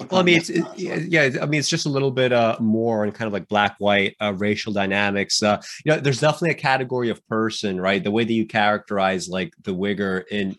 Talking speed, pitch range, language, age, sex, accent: 240 wpm, 100-120 Hz, English, 30-49, male, American